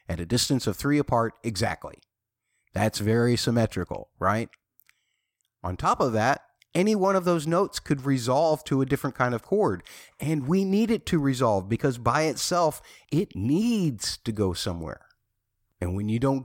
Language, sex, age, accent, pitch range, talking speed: English, male, 50-69, American, 105-160 Hz, 170 wpm